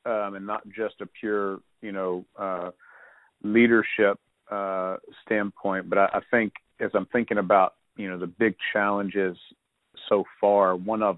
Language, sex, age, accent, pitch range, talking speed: English, male, 40-59, American, 95-110 Hz, 155 wpm